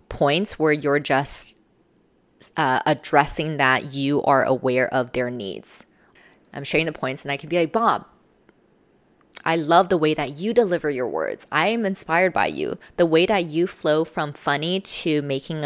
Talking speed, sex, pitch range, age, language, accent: 175 wpm, female, 135-180 Hz, 20-39, English, American